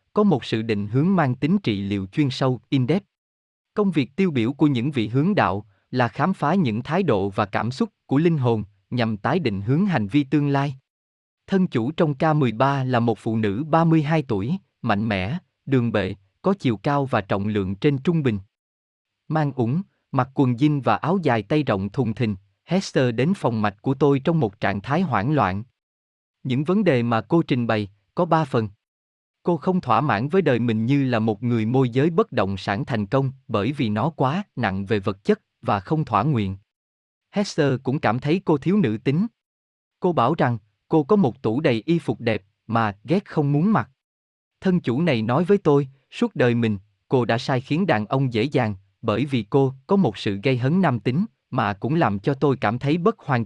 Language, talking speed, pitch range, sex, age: Vietnamese, 210 wpm, 110-160 Hz, male, 20-39